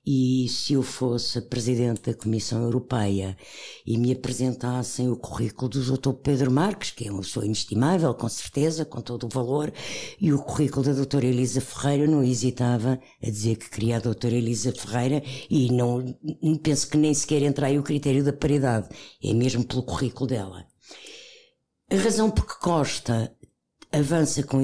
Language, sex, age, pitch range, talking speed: Portuguese, female, 60-79, 125-160 Hz, 175 wpm